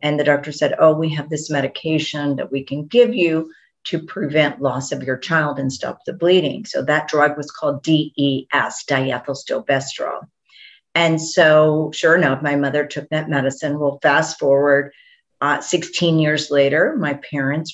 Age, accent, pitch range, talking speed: 50-69, American, 140-160 Hz, 165 wpm